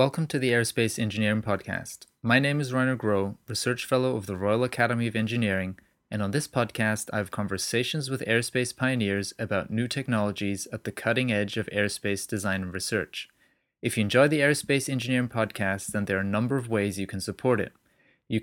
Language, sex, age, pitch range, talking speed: English, male, 30-49, 105-125 Hz, 195 wpm